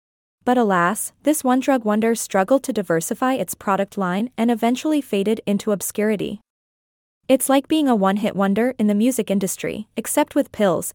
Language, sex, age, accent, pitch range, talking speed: English, female, 20-39, American, 200-250 Hz, 160 wpm